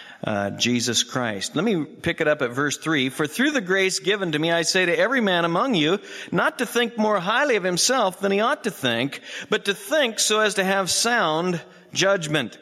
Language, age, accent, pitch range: English, 50-69, American, 140-205 Hz